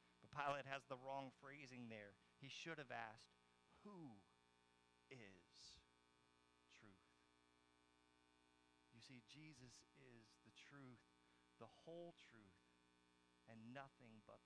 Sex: male